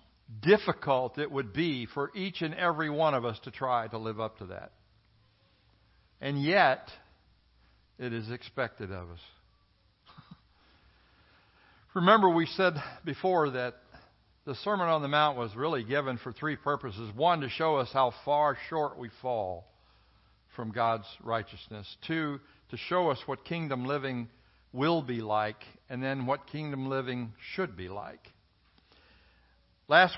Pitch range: 110-150 Hz